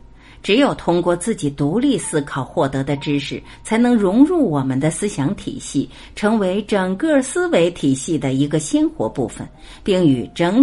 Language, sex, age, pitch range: Chinese, female, 50-69, 150-240 Hz